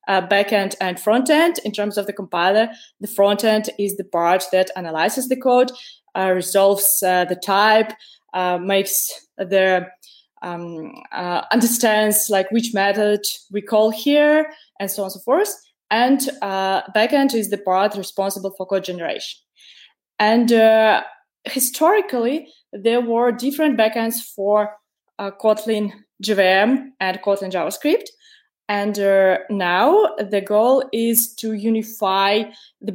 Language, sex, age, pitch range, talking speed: English, female, 20-39, 195-225 Hz, 135 wpm